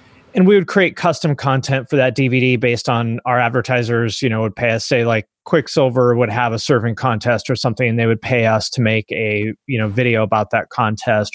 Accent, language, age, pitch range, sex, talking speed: American, English, 30-49, 110-135 Hz, male, 220 wpm